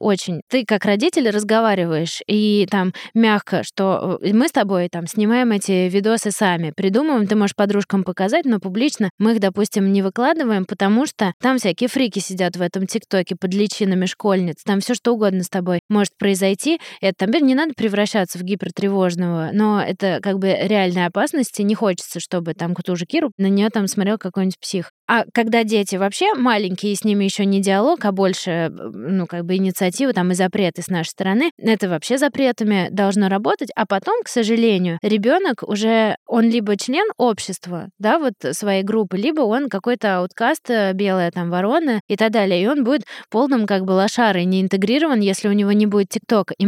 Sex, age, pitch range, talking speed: female, 20-39, 190-225 Hz, 185 wpm